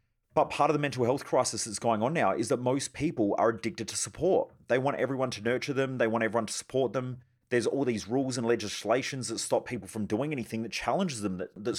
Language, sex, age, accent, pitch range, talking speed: English, male, 30-49, Australian, 110-145 Hz, 245 wpm